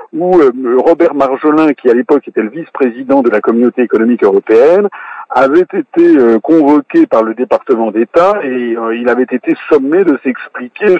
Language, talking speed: French, 155 wpm